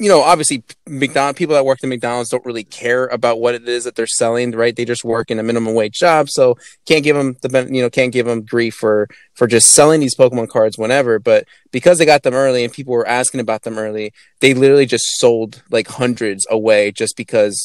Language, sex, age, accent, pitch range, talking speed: English, male, 20-39, American, 115-135 Hz, 235 wpm